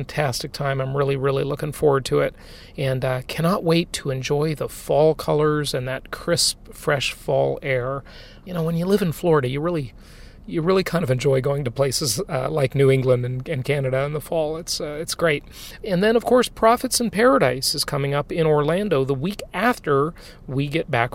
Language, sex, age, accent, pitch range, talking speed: English, male, 40-59, American, 140-180 Hz, 205 wpm